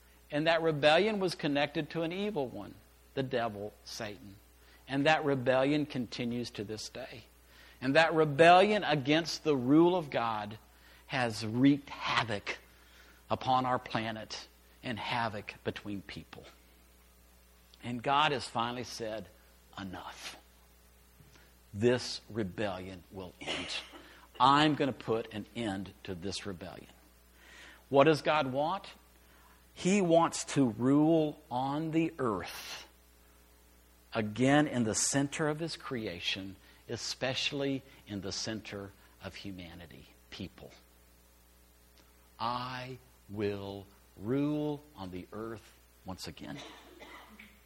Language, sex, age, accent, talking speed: English, male, 50-69, American, 110 wpm